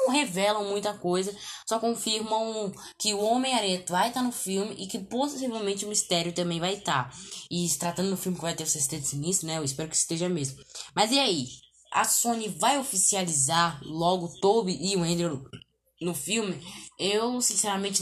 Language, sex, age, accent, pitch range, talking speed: Portuguese, female, 10-29, Brazilian, 175-235 Hz, 180 wpm